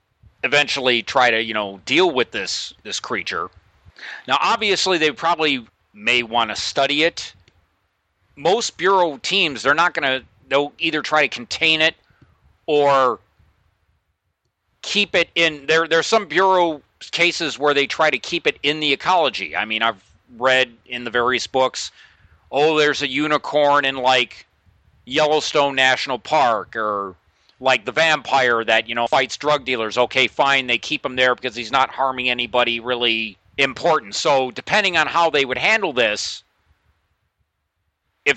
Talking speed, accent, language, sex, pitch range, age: 155 wpm, American, English, male, 105-145 Hz, 40-59